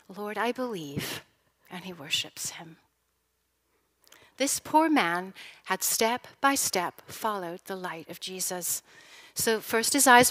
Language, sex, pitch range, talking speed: English, female, 185-235 Hz, 135 wpm